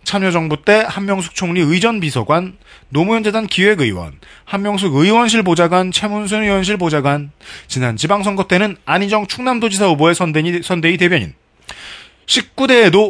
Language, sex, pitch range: Korean, male, 150-210 Hz